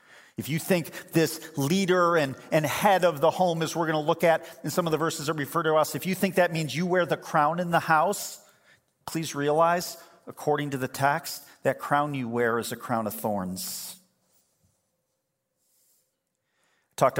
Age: 40-59